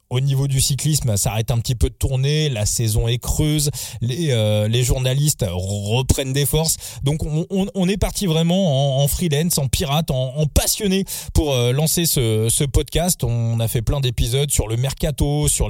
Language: French